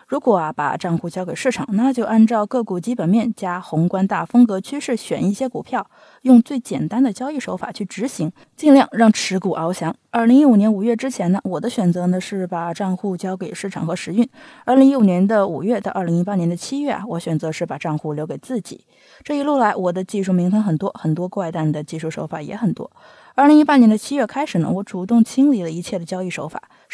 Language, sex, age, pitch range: Chinese, female, 20-39, 180-250 Hz